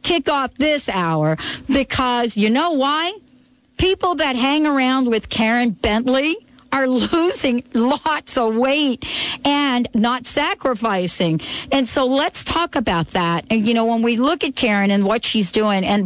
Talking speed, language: 155 wpm, English